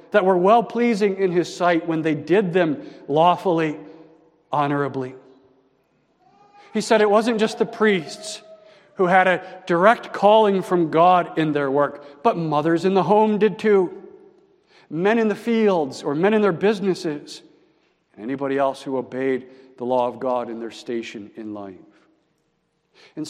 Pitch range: 140-200 Hz